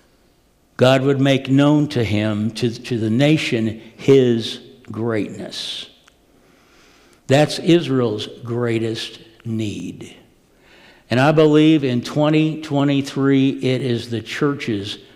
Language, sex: English, male